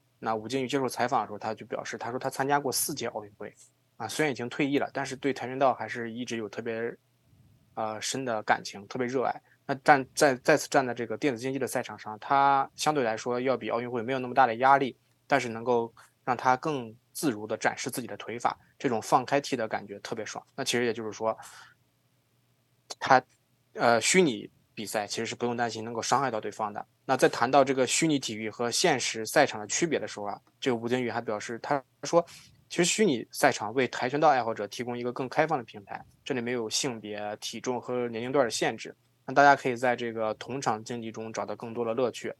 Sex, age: male, 20-39